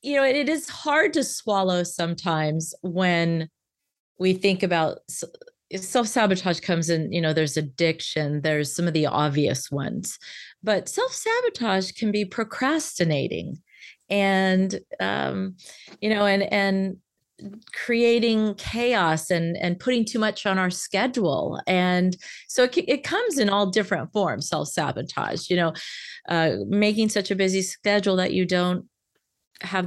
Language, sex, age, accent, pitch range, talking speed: English, female, 30-49, American, 170-210 Hz, 135 wpm